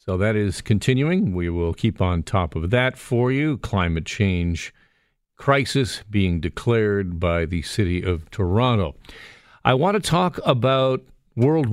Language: English